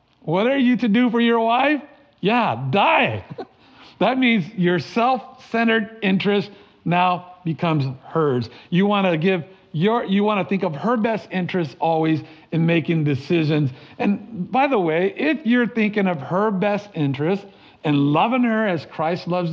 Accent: American